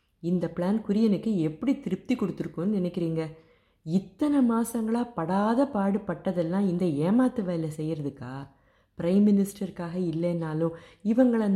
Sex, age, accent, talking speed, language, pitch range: female, 30-49, native, 100 wpm, Tamil, 155-195 Hz